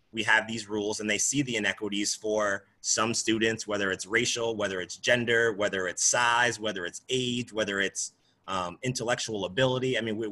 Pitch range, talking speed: 105-125 Hz, 180 wpm